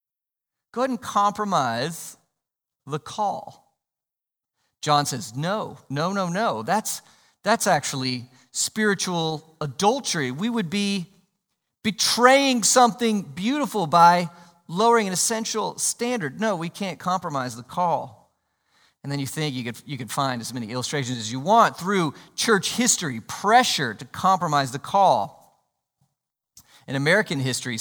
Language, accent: English, American